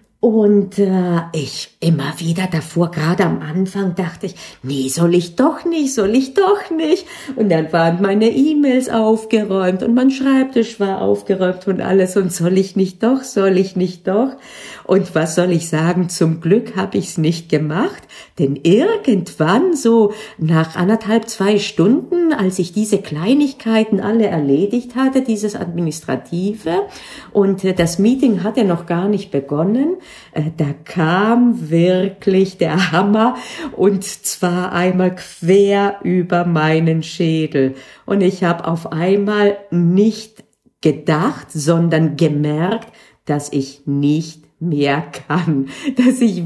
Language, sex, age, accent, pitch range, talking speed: German, female, 50-69, German, 165-225 Hz, 135 wpm